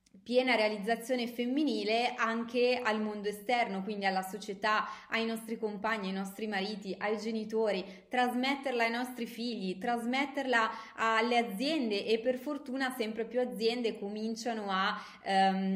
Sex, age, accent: female, 20-39, native